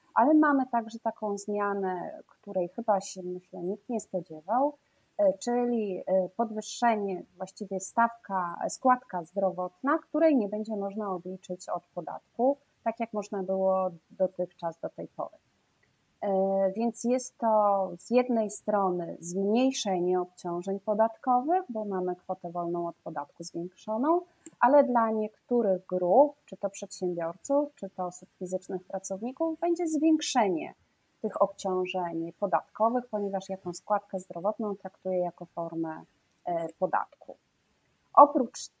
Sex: female